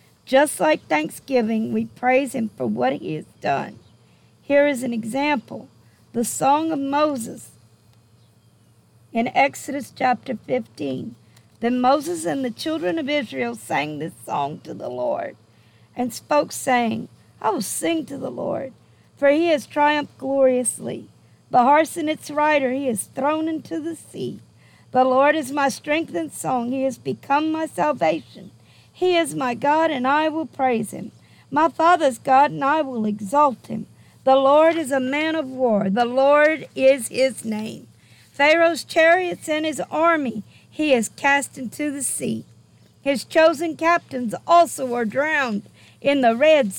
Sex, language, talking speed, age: female, English, 155 wpm, 50-69